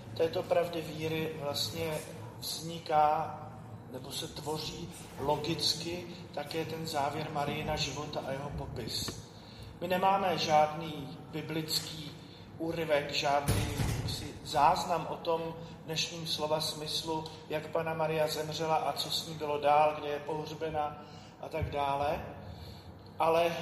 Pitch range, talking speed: 145-165 Hz, 115 wpm